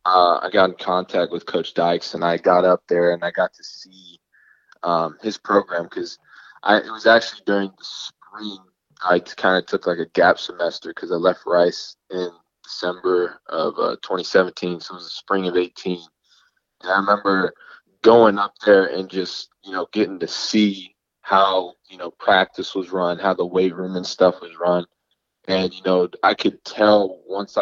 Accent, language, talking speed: American, English, 185 wpm